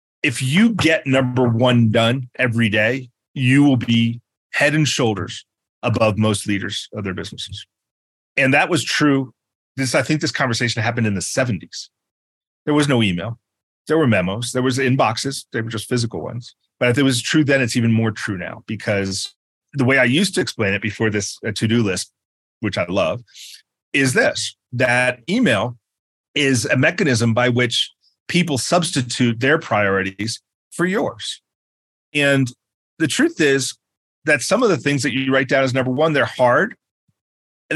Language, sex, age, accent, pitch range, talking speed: English, male, 40-59, American, 115-150 Hz, 170 wpm